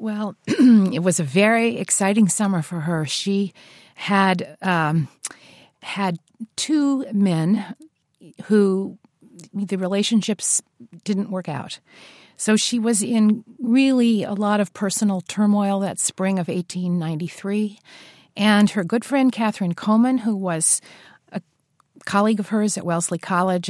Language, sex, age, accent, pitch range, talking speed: English, female, 50-69, American, 180-215 Hz, 125 wpm